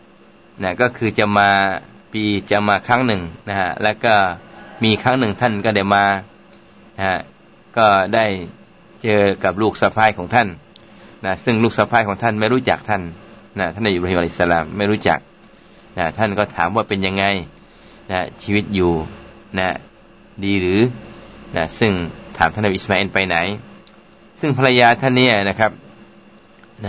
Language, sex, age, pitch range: Thai, male, 20-39, 95-120 Hz